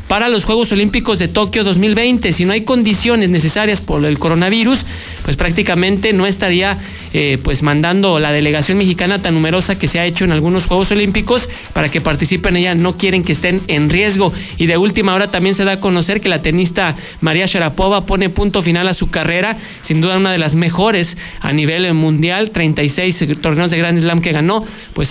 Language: Spanish